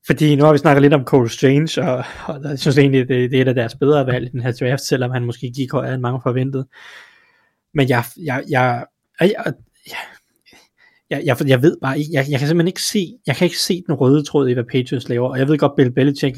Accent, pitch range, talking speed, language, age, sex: native, 125-145 Hz, 245 wpm, Danish, 20-39, male